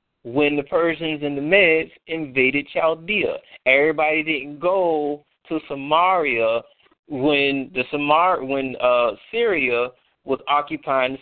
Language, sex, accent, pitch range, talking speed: English, male, American, 130-165 Hz, 120 wpm